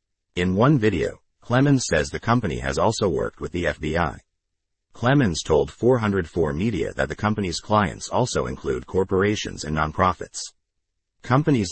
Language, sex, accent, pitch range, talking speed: English, male, American, 80-105 Hz, 140 wpm